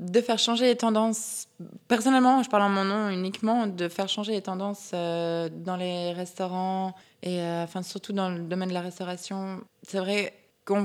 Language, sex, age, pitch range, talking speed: French, female, 20-39, 180-215 Hz, 185 wpm